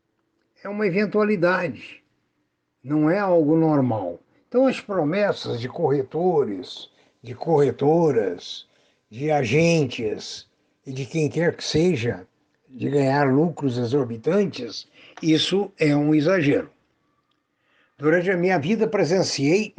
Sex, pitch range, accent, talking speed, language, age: male, 140-190 Hz, Brazilian, 105 wpm, Portuguese, 60-79